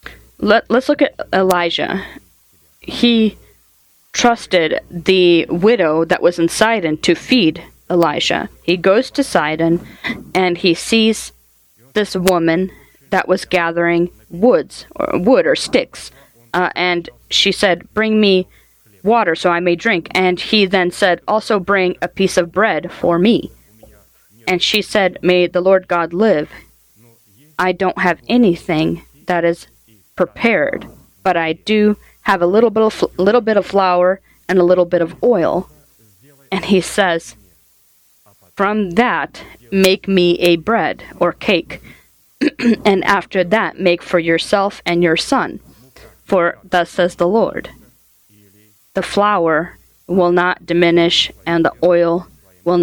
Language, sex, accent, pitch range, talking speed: English, female, American, 170-195 Hz, 140 wpm